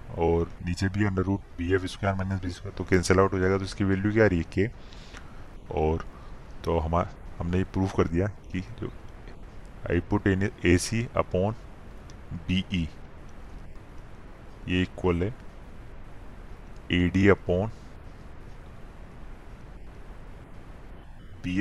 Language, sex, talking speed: Hindi, male, 125 wpm